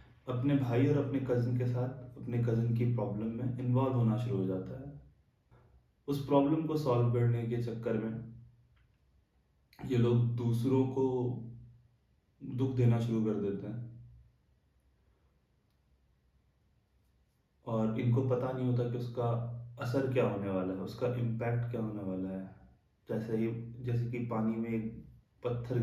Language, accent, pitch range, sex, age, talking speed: Hindi, native, 100-120 Hz, male, 30-49, 140 wpm